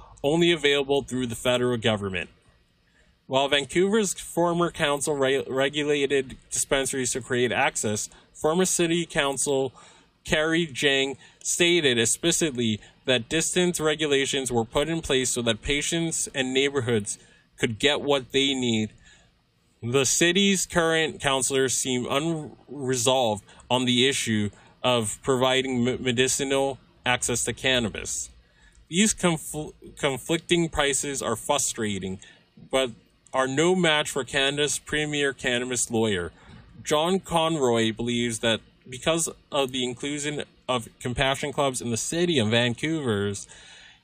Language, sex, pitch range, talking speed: English, male, 120-150 Hz, 115 wpm